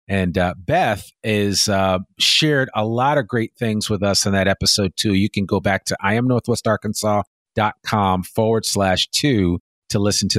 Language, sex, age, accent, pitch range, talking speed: English, male, 40-59, American, 95-115 Hz, 180 wpm